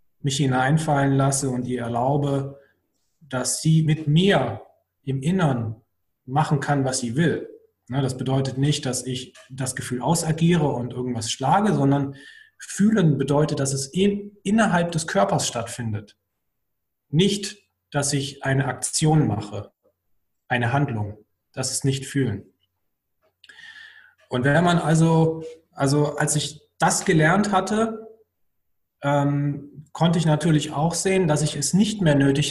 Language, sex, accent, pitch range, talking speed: German, male, German, 130-180 Hz, 130 wpm